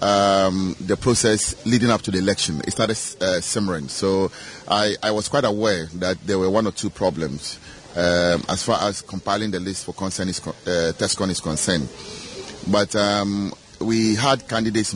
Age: 30-49